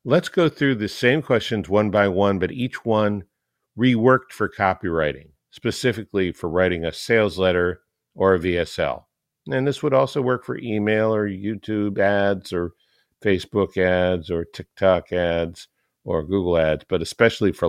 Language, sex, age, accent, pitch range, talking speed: English, male, 50-69, American, 90-120 Hz, 155 wpm